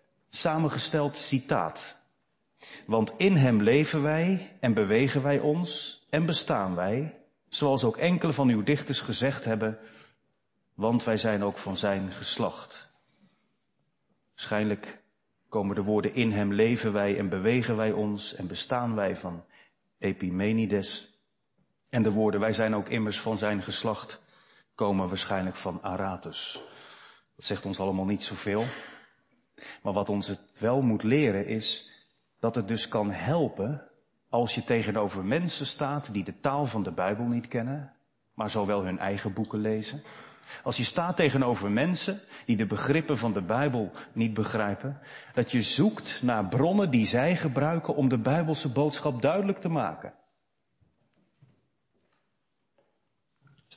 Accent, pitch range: Dutch, 105-145 Hz